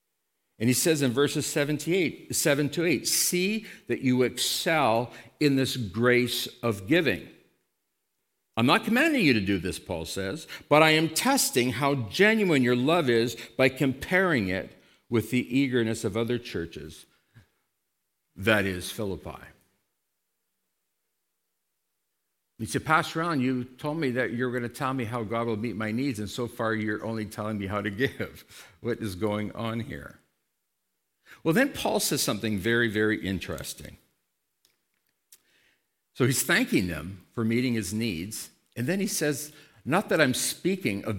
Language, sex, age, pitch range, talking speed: English, male, 60-79, 110-145 Hz, 155 wpm